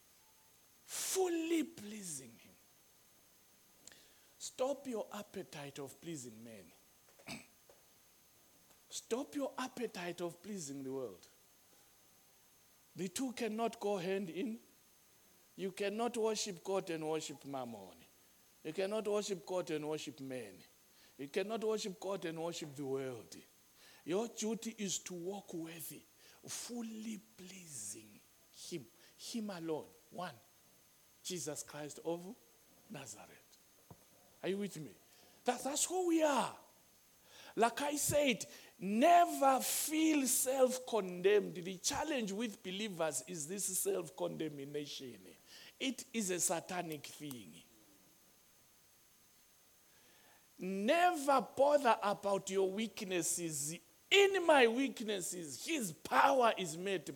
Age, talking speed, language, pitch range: 60-79, 105 wpm, English, 165-240 Hz